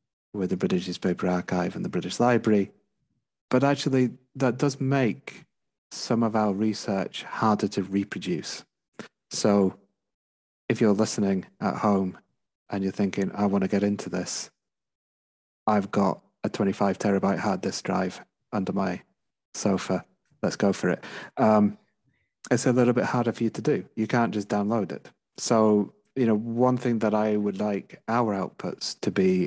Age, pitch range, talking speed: 30-49, 95-115 Hz, 160 wpm